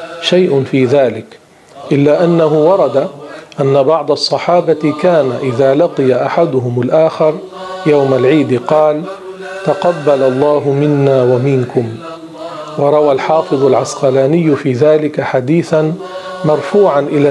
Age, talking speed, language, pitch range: 40-59, 100 wpm, Arabic, 140-165 Hz